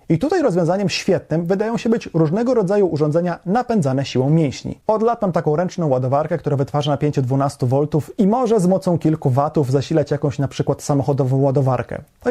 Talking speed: 175 wpm